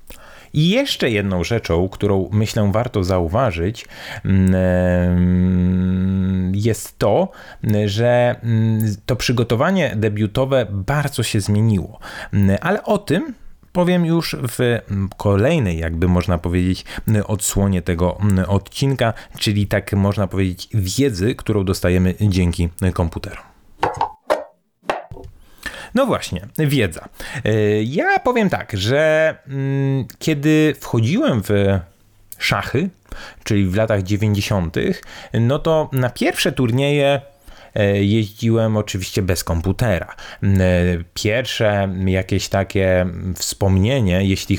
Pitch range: 95-130 Hz